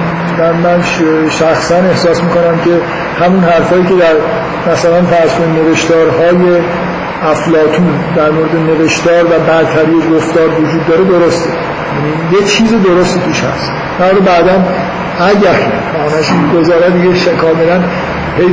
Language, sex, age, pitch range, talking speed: Persian, male, 50-69, 160-180 Hz, 105 wpm